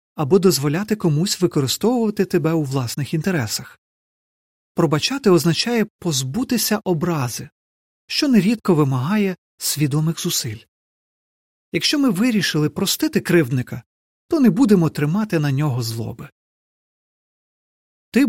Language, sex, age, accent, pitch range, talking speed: Ukrainian, male, 40-59, native, 140-200 Hz, 100 wpm